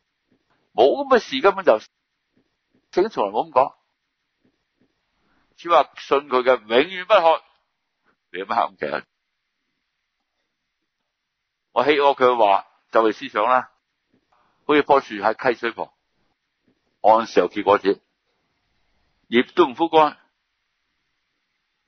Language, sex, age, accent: Chinese, male, 60-79, native